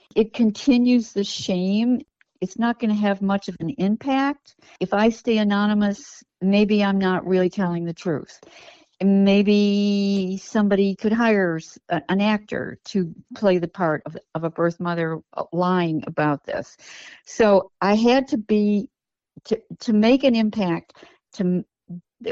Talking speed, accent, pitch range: 140 wpm, American, 170-210 Hz